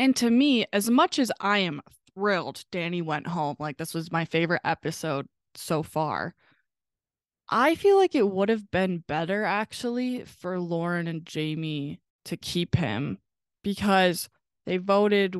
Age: 20-39